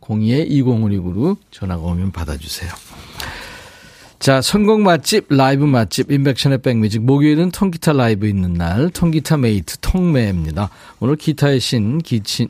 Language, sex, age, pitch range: Korean, male, 40-59, 115-165 Hz